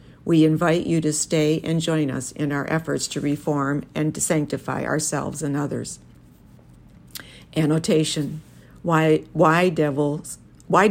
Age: 60-79